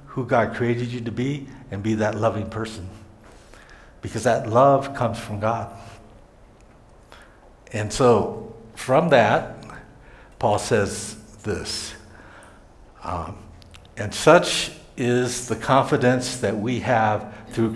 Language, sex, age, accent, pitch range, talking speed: English, male, 60-79, American, 105-120 Hz, 115 wpm